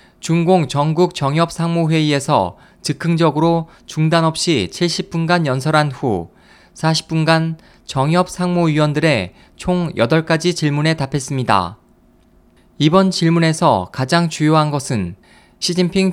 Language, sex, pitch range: Korean, male, 145-170 Hz